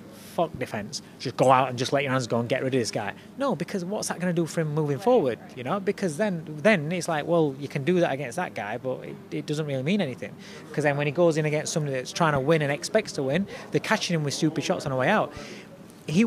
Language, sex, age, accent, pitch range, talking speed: English, male, 30-49, British, 140-195 Hz, 280 wpm